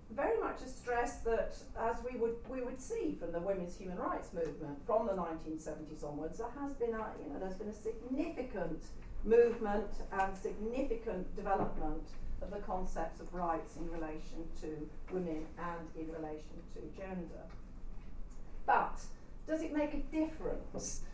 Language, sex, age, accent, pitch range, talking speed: English, female, 40-59, British, 165-235 Hz, 155 wpm